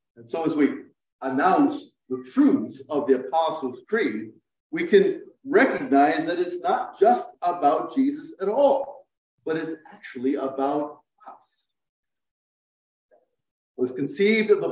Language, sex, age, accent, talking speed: English, male, 50-69, American, 125 wpm